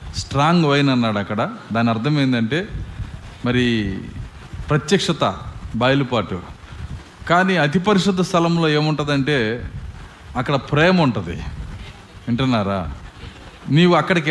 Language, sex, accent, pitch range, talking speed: Telugu, male, native, 120-180 Hz, 90 wpm